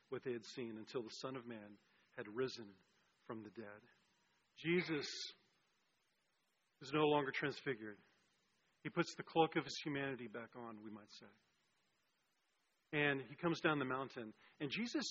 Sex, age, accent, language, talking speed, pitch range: male, 40-59, American, English, 155 wpm, 135-180 Hz